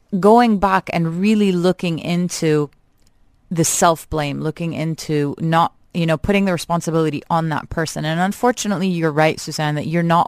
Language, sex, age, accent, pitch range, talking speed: English, female, 30-49, American, 150-180 Hz, 165 wpm